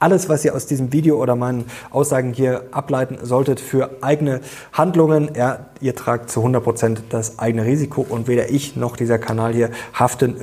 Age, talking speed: 20-39, 175 wpm